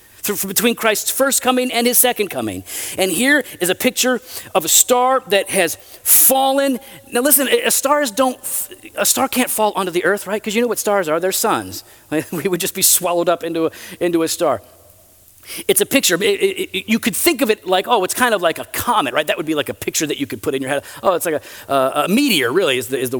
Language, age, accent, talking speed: English, 40-59, American, 260 wpm